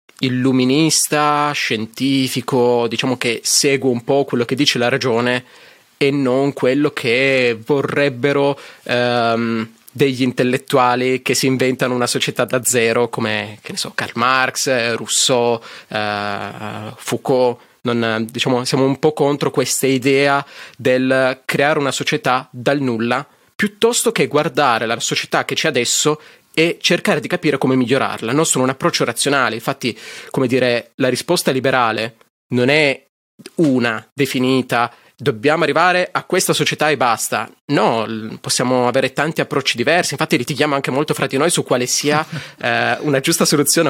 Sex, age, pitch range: male, 20-39, 120-150 Hz